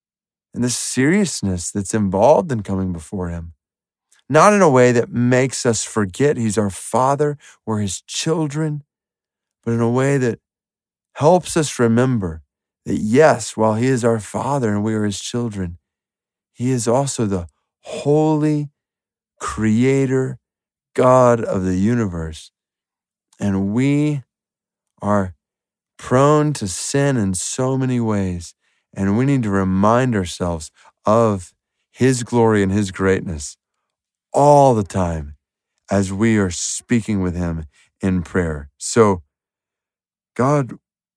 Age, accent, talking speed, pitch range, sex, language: 50-69, American, 130 wpm, 100-130 Hz, male, English